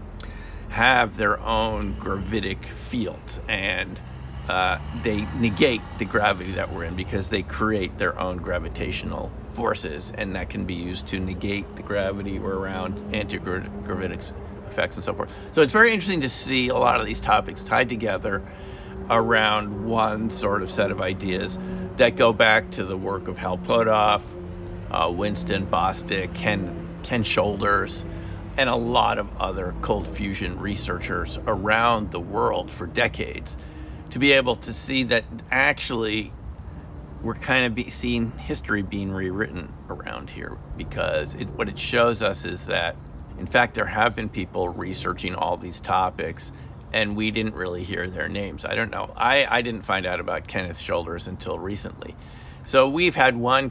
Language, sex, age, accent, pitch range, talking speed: English, male, 50-69, American, 90-110 Hz, 160 wpm